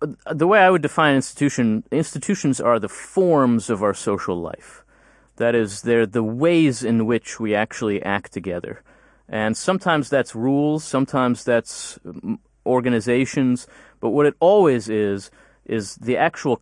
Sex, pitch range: male, 105-135 Hz